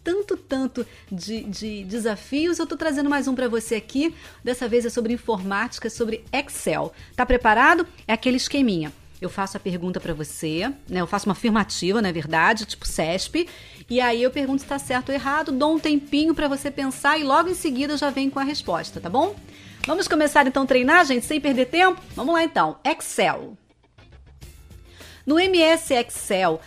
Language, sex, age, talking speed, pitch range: Portuguese, female, 40-59, 190 wpm, 205-290 Hz